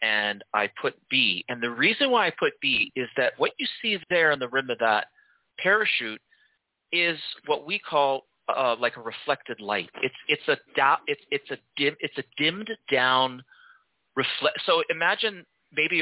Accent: American